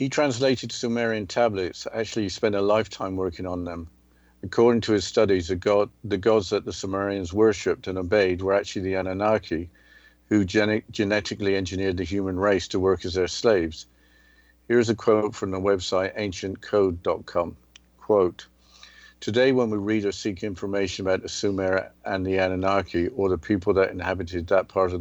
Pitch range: 90-105 Hz